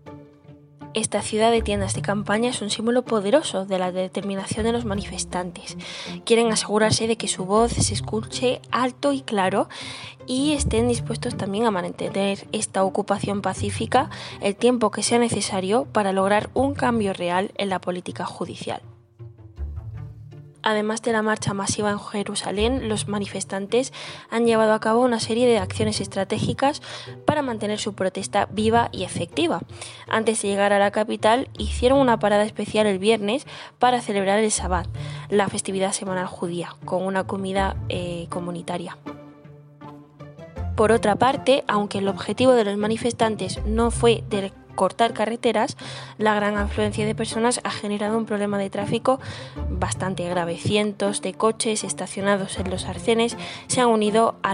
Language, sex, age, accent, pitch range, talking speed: Spanish, female, 20-39, Spanish, 175-225 Hz, 150 wpm